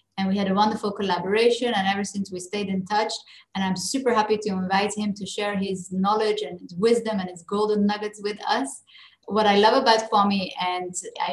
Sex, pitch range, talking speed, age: female, 185-230 Hz, 205 wpm, 30-49